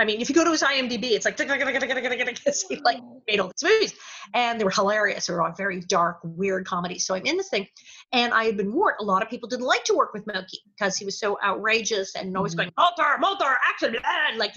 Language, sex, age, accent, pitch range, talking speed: English, female, 40-59, American, 190-255 Hz, 240 wpm